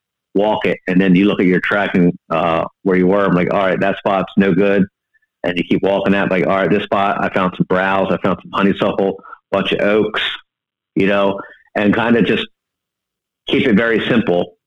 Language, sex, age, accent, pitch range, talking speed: English, male, 50-69, American, 90-105 Hz, 215 wpm